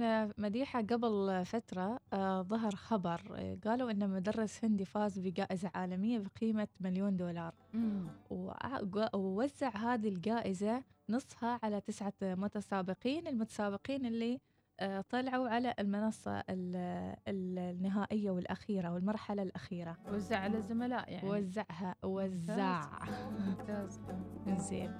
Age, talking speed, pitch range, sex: 20-39, 85 wpm, 185-225 Hz, female